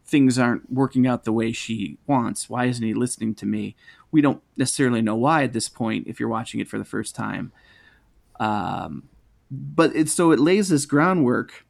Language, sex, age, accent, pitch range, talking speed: English, male, 30-49, American, 120-150 Hz, 195 wpm